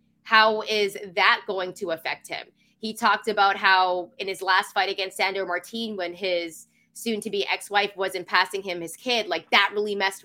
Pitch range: 185-230 Hz